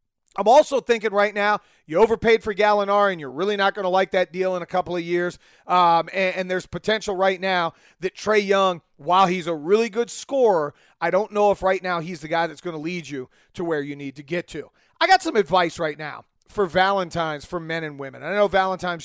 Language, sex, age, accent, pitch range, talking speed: English, male, 30-49, American, 165-210 Hz, 235 wpm